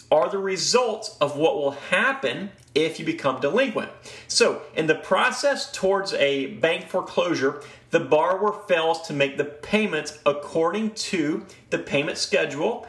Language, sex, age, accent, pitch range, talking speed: English, male, 30-49, American, 145-210 Hz, 145 wpm